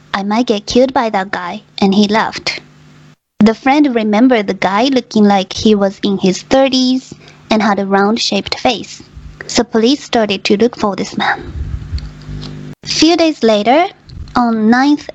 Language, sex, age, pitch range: Japanese, female, 20-39, 205-245 Hz